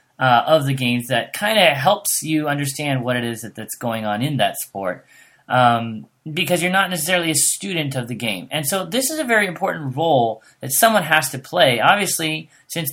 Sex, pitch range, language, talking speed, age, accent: male, 125-170 Hz, English, 210 wpm, 30-49, American